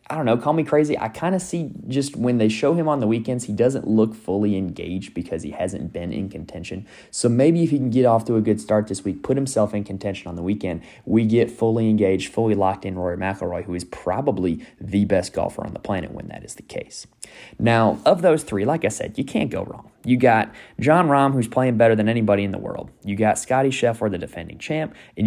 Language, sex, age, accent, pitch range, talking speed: English, male, 20-39, American, 100-130 Hz, 245 wpm